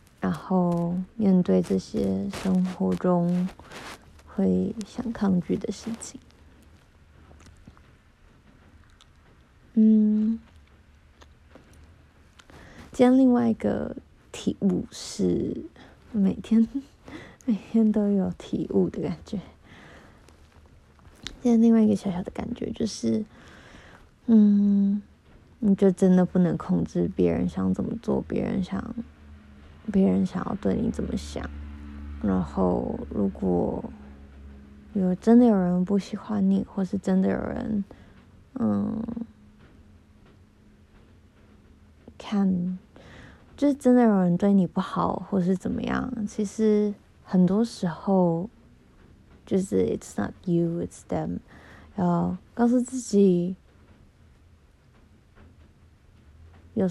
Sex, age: female, 20-39